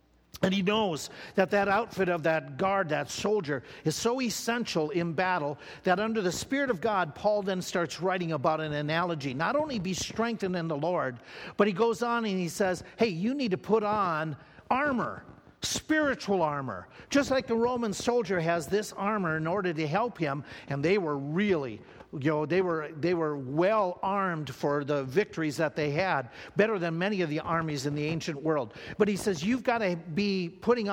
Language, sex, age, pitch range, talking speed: English, male, 50-69, 155-210 Hz, 195 wpm